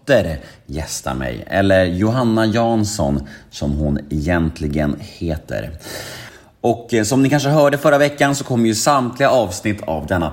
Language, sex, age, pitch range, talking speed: Swedish, male, 30-49, 85-125 Hz, 135 wpm